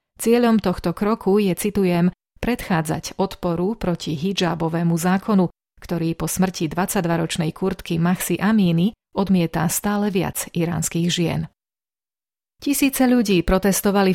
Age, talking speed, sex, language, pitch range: 30-49, 105 wpm, female, Slovak, 170-195 Hz